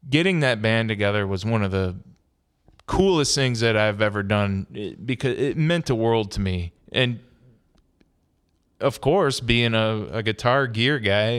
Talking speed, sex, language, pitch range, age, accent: 160 wpm, male, English, 100-120 Hz, 20-39, American